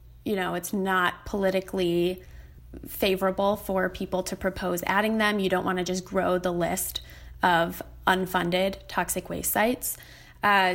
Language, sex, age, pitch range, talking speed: English, female, 20-39, 175-195 Hz, 145 wpm